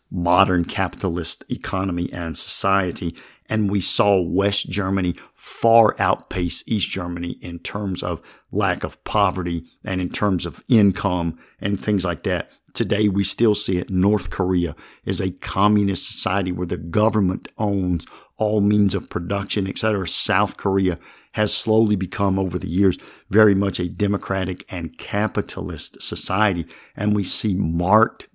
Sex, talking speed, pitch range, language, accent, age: male, 145 wpm, 90-105 Hz, English, American, 50-69